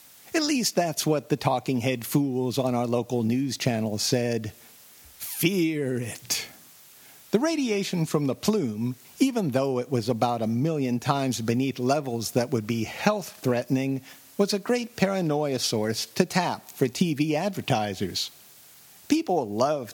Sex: male